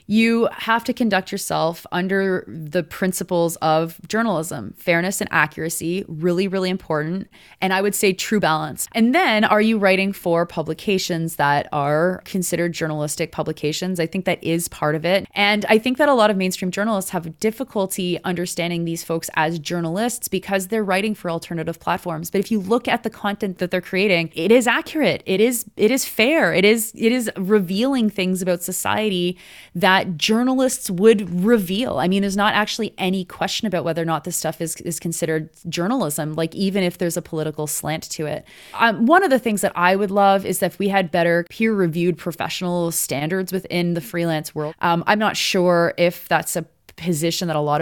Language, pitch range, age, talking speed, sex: English, 165-205 Hz, 20-39, 190 wpm, female